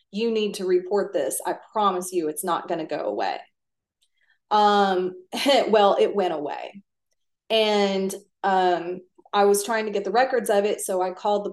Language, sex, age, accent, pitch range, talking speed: English, female, 30-49, American, 185-220 Hz, 175 wpm